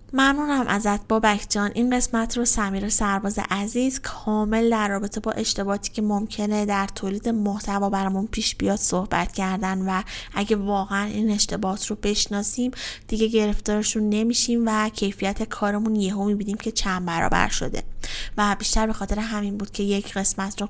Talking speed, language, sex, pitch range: 155 wpm, Persian, female, 200-230 Hz